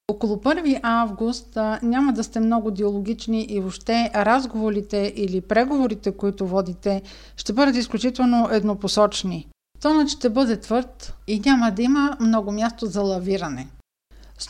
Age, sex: 50-69, female